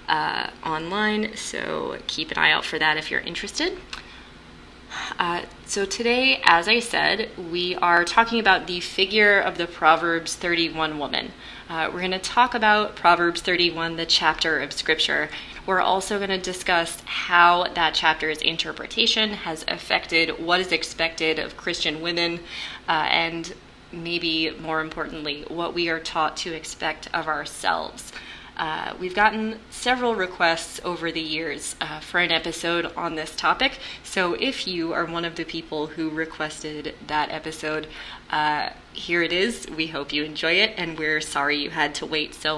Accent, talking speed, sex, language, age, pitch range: American, 160 wpm, female, English, 20-39, 160-185 Hz